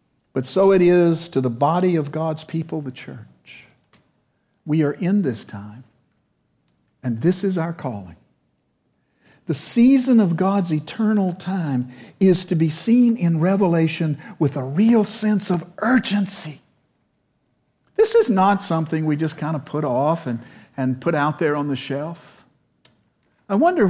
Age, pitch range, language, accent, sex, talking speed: 60-79, 135-190 Hz, English, American, male, 150 wpm